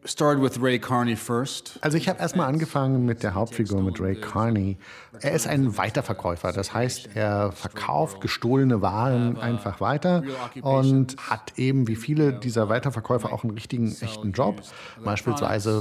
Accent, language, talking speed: German, German, 135 wpm